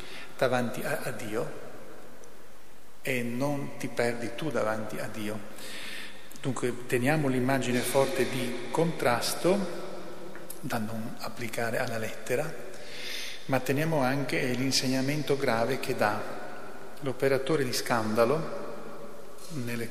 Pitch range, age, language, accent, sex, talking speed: 120-140 Hz, 40-59, Italian, native, male, 100 wpm